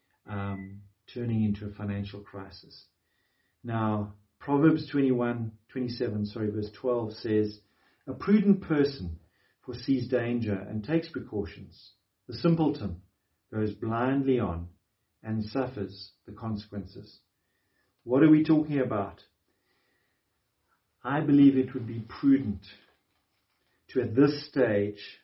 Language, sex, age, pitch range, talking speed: English, male, 50-69, 100-135 Hz, 110 wpm